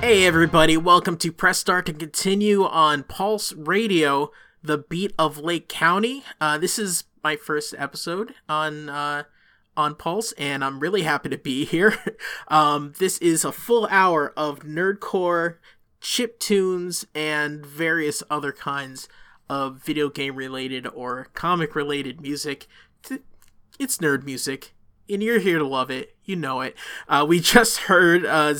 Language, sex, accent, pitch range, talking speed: English, male, American, 145-185 Hz, 150 wpm